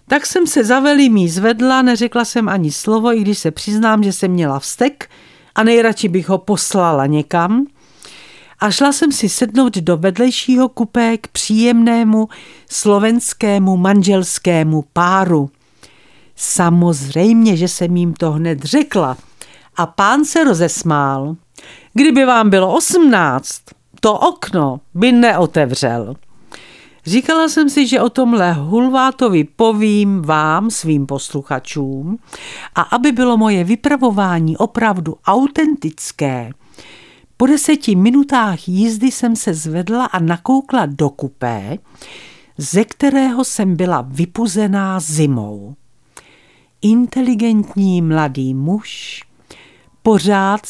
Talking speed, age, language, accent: 110 wpm, 50-69, Czech, native